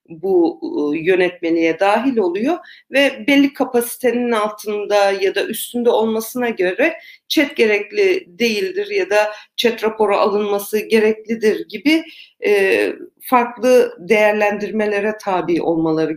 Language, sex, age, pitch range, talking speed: Turkish, female, 50-69, 205-275 Hz, 100 wpm